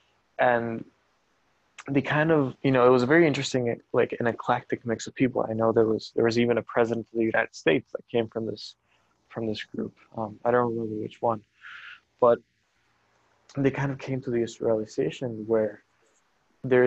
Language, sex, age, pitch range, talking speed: English, male, 20-39, 115-125 Hz, 190 wpm